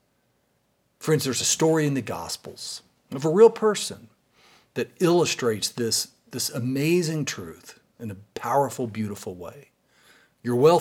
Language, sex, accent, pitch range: English, male, American, 120-185 Hz